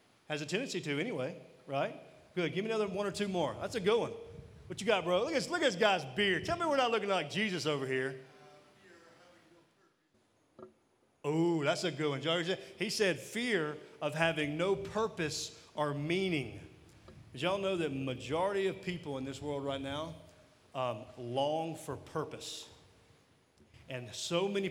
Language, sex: English, male